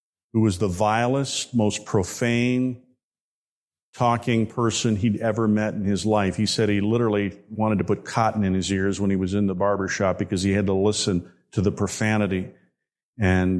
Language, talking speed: English, 180 wpm